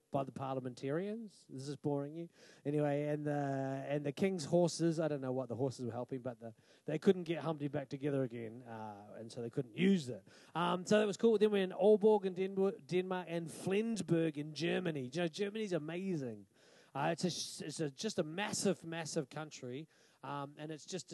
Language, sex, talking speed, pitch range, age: English, male, 205 wpm, 130-165 Hz, 30-49